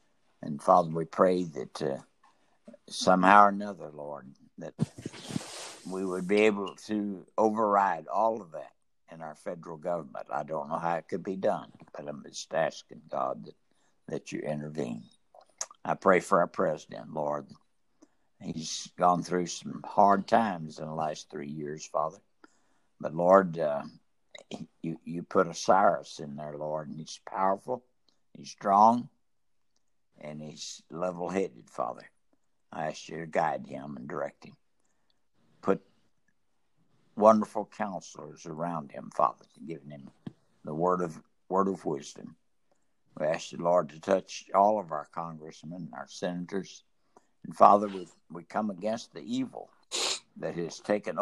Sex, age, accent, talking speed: male, 60-79, American, 145 wpm